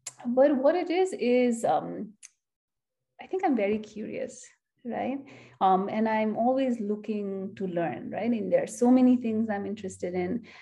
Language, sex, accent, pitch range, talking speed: English, female, Indian, 205-245 Hz, 165 wpm